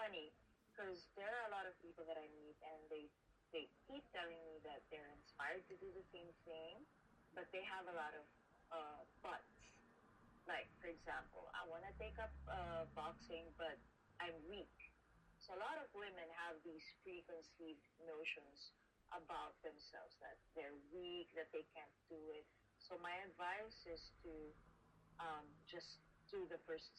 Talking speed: 170 wpm